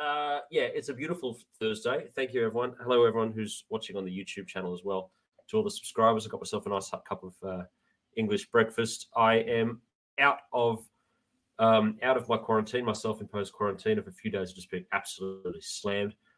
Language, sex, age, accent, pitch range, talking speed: English, male, 30-49, Australian, 100-145 Hz, 200 wpm